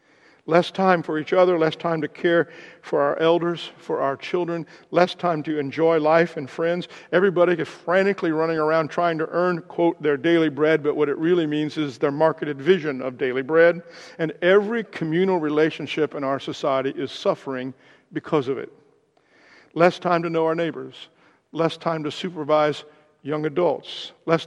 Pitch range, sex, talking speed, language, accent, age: 150-175 Hz, male, 175 wpm, English, American, 50-69